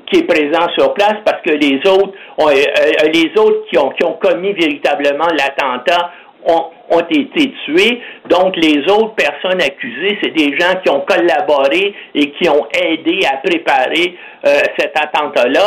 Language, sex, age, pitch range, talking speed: French, male, 60-79, 170-285 Hz, 155 wpm